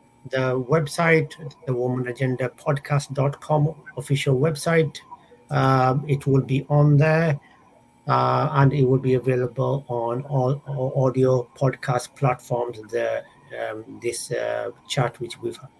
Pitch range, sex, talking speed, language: 125-150 Hz, male, 125 wpm, English